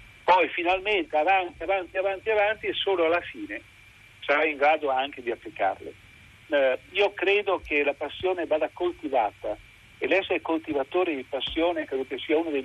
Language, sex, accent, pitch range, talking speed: Italian, male, native, 135-200 Hz, 165 wpm